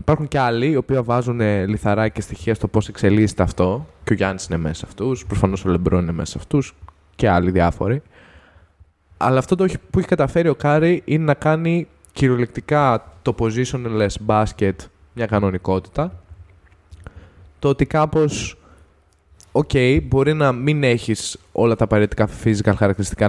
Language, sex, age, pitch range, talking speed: Greek, male, 20-39, 90-120 Hz, 155 wpm